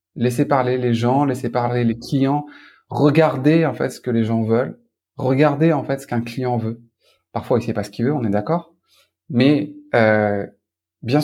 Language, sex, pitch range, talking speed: French, male, 115-140 Hz, 190 wpm